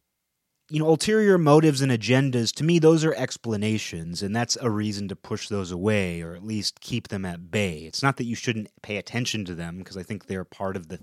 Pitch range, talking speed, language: 100-130 Hz, 230 wpm, English